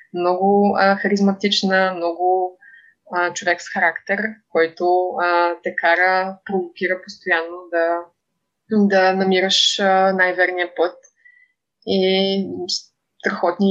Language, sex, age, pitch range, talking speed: Bulgarian, female, 20-39, 175-220 Hz, 80 wpm